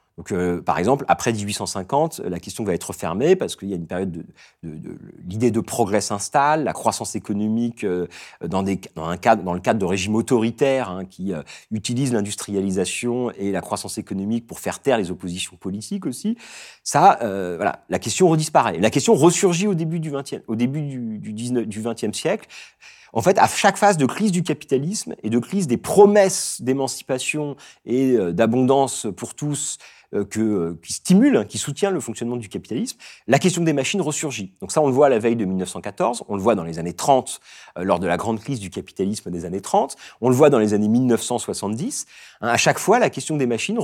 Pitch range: 105-145 Hz